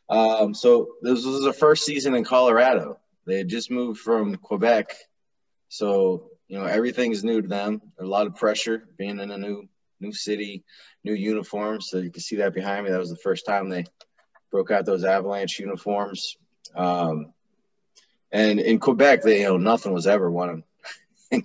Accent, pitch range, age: American, 90-120 Hz, 20-39